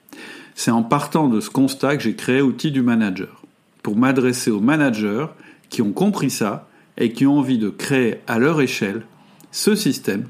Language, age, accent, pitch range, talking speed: French, 50-69, French, 115-165 Hz, 180 wpm